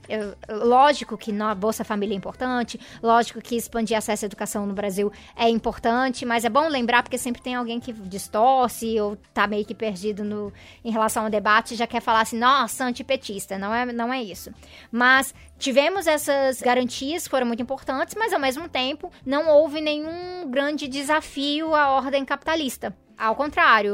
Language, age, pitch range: Portuguese, 20-39, 220-270 Hz